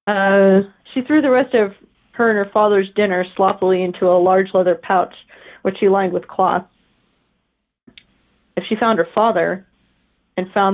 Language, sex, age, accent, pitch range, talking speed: English, female, 30-49, American, 185-220 Hz, 160 wpm